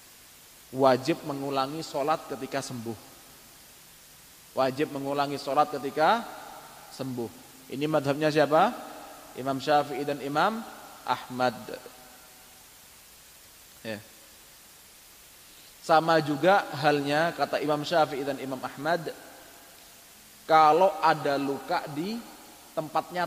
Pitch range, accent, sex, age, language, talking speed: 140-200 Hz, native, male, 30-49, Indonesian, 85 wpm